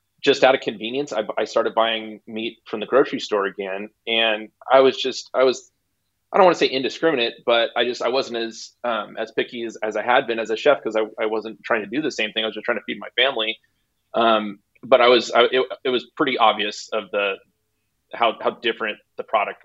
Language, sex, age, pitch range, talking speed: English, male, 20-39, 105-120 Hz, 240 wpm